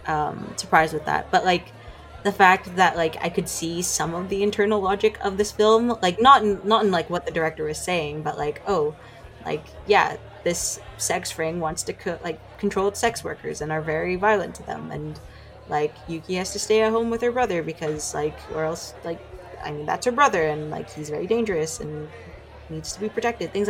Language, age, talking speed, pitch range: English, 20-39, 210 wpm, 155-200 Hz